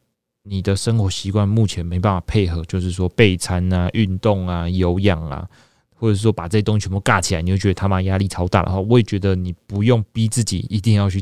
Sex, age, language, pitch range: male, 20-39, Chinese, 95-110 Hz